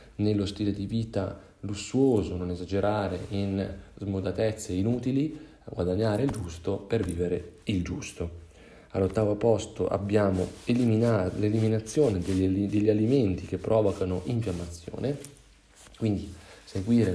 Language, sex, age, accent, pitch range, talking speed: Italian, male, 40-59, native, 90-105 Hz, 100 wpm